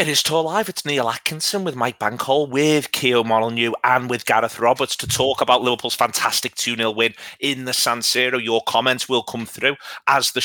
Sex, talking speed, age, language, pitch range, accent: male, 205 wpm, 30-49, English, 110-130 Hz, British